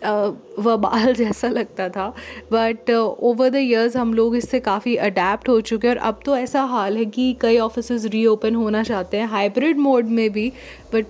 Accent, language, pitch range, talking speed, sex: native, Hindi, 205-245 Hz, 190 wpm, female